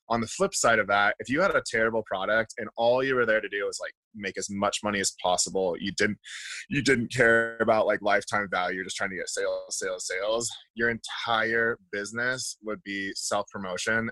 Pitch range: 105-135 Hz